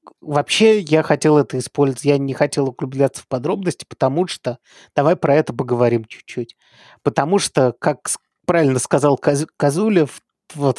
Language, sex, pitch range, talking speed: Russian, male, 130-160 Hz, 145 wpm